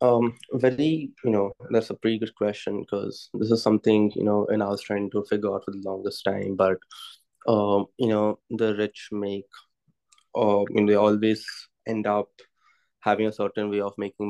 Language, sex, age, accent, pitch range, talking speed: Hindi, male, 20-39, native, 100-110 Hz, 195 wpm